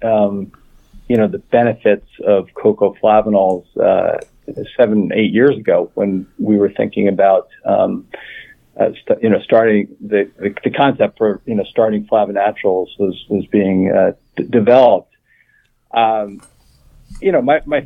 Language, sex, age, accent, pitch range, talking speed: English, male, 50-69, American, 105-145 Hz, 145 wpm